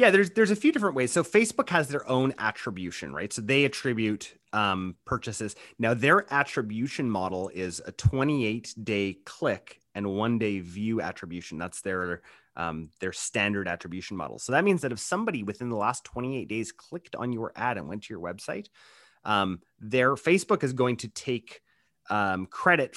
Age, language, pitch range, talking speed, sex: 30-49, English, 100-140 Hz, 180 wpm, male